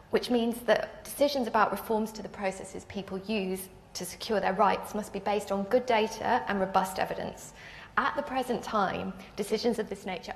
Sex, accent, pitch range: female, British, 190-230 Hz